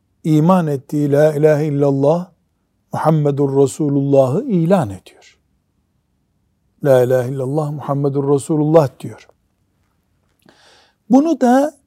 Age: 60-79